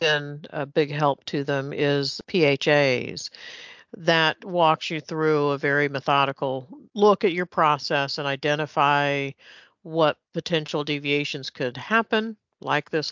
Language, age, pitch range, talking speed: English, 50-69, 140-160 Hz, 130 wpm